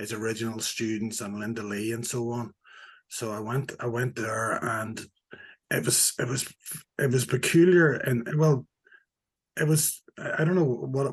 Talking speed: 165 wpm